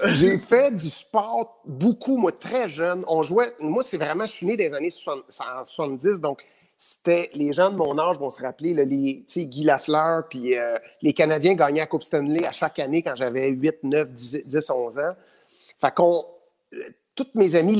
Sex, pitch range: male, 140-195 Hz